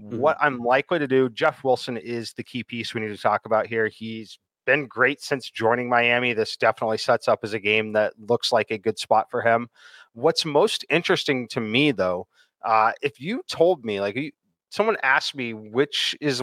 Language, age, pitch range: English, 30-49, 110-150 Hz